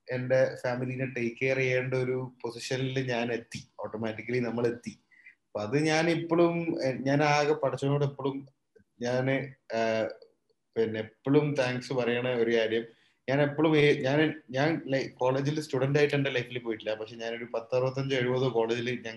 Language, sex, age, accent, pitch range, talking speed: Malayalam, male, 20-39, native, 115-145 Hz, 140 wpm